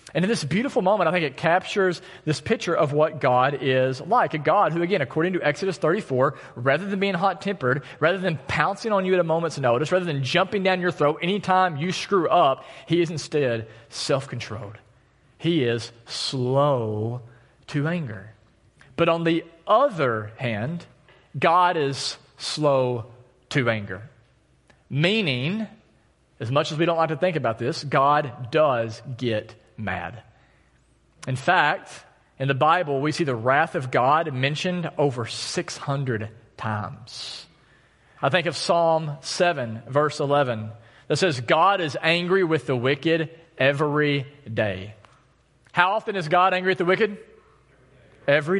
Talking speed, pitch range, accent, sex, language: 150 wpm, 125-170 Hz, American, male, English